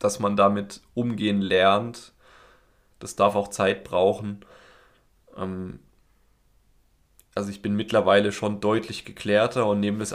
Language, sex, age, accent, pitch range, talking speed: German, male, 20-39, German, 95-110 Hz, 125 wpm